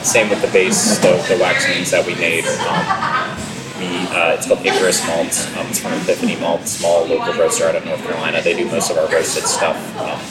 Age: 30-49